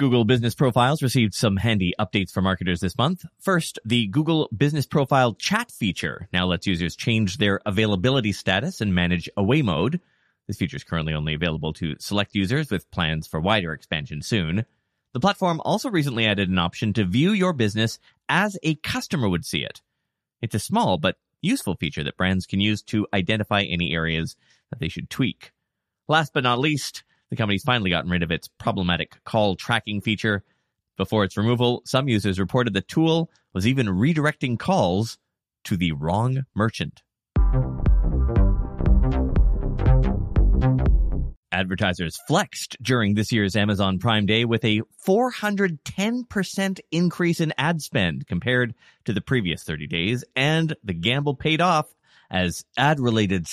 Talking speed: 155 wpm